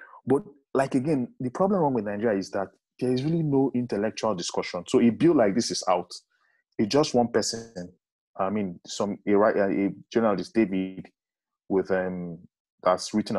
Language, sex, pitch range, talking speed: English, male, 95-120 Hz, 165 wpm